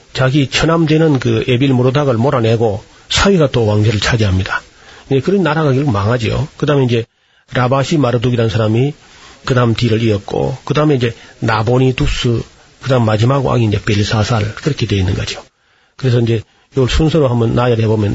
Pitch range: 115-145 Hz